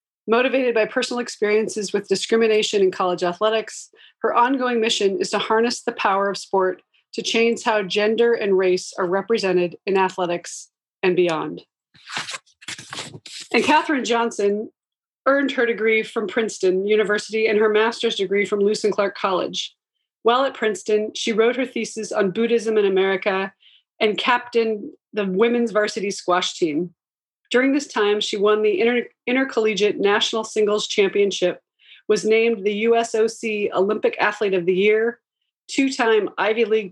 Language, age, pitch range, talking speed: English, 30-49, 200-235 Hz, 145 wpm